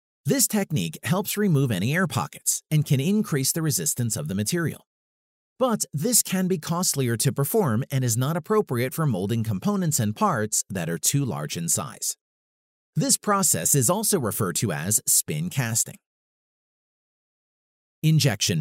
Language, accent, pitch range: English, American, 130-185 Hz